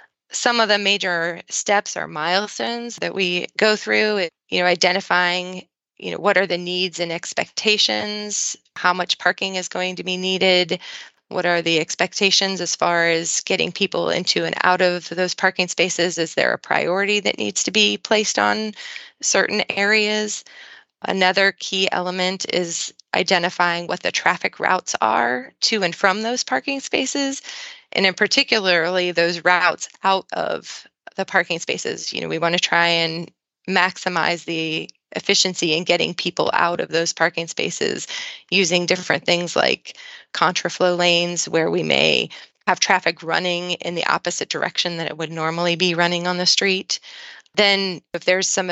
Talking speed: 160 wpm